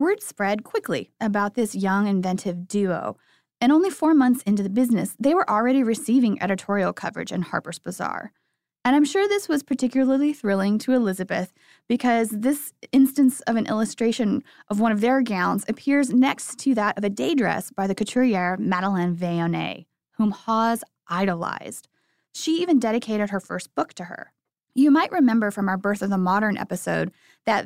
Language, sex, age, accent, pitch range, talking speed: English, female, 20-39, American, 195-265 Hz, 170 wpm